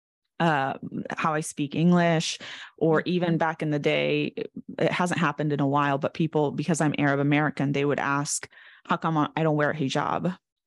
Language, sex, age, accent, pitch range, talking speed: English, female, 20-39, American, 155-185 Hz, 190 wpm